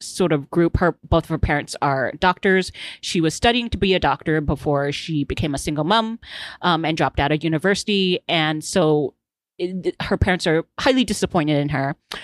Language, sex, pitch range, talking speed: English, female, 160-210 Hz, 185 wpm